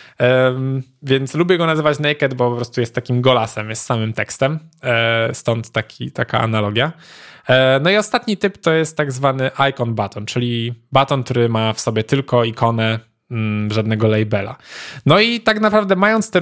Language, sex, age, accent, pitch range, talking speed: Polish, male, 20-39, native, 115-145 Hz, 175 wpm